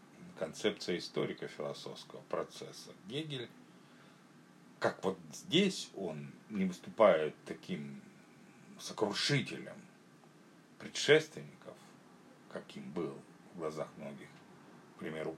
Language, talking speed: Russian, 80 wpm